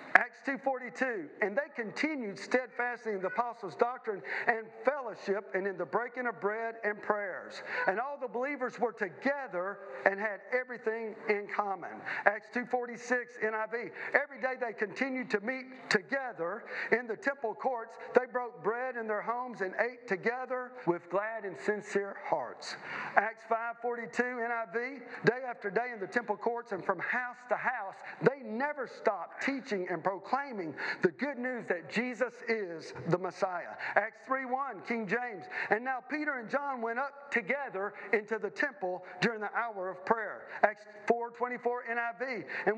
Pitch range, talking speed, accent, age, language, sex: 210-255 Hz, 155 wpm, American, 40-59, English, male